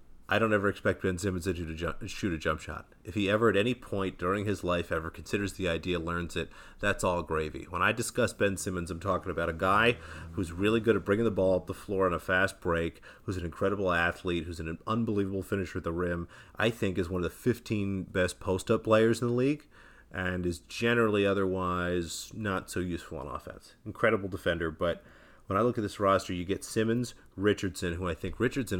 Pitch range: 85-100 Hz